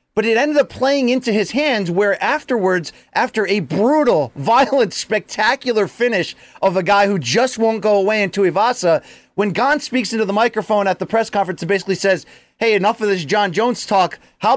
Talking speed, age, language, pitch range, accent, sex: 195 wpm, 30-49, English, 185-235 Hz, American, male